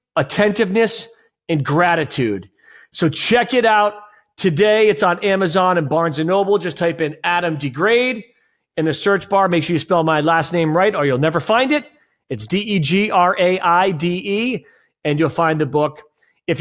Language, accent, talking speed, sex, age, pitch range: English, American, 165 wpm, male, 30-49, 165-215 Hz